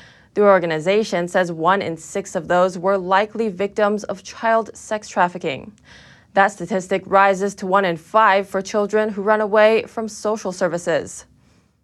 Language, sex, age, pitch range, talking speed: English, female, 20-39, 185-220 Hz, 150 wpm